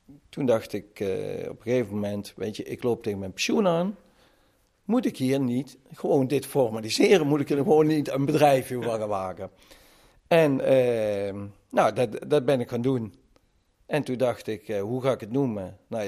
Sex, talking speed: male, 200 wpm